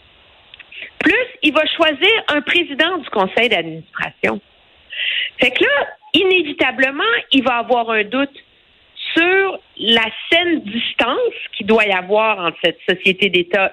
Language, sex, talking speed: French, female, 130 wpm